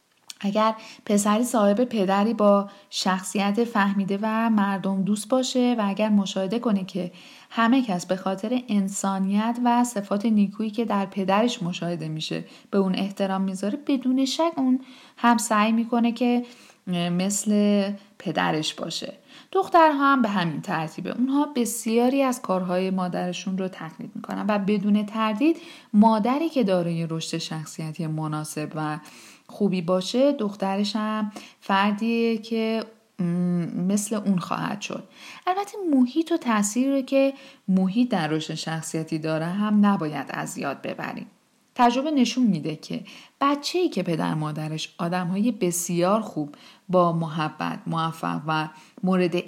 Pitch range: 180-240 Hz